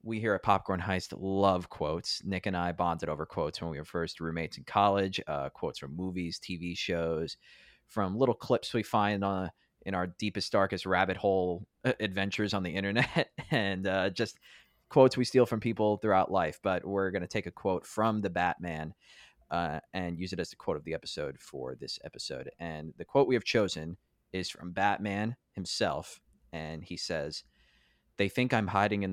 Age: 20-39